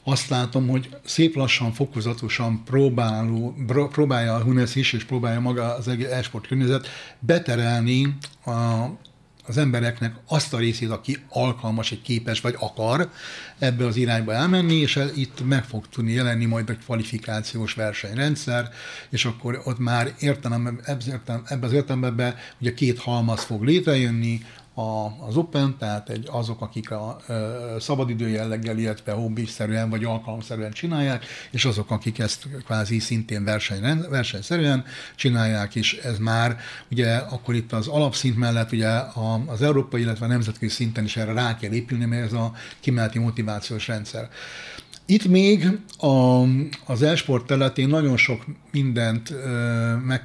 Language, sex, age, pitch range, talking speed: Hungarian, male, 60-79, 115-135 Hz, 140 wpm